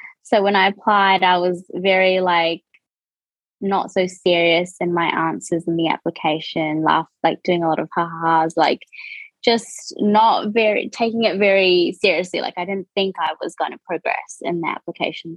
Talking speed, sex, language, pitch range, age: 170 wpm, female, English, 180-225 Hz, 20-39